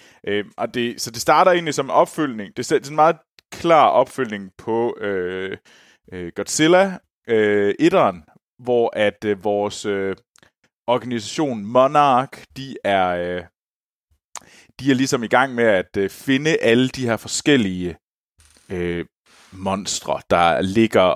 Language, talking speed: Danish, 110 wpm